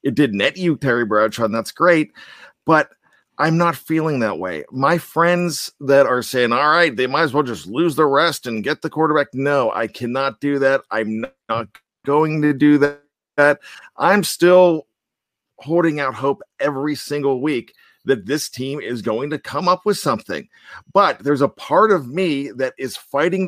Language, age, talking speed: English, 50-69, 185 wpm